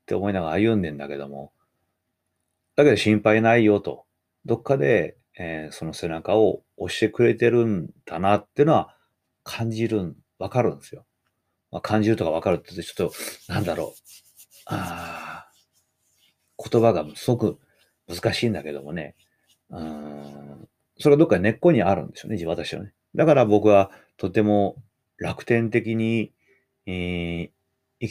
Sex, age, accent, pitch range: male, 40-59, native, 85-115 Hz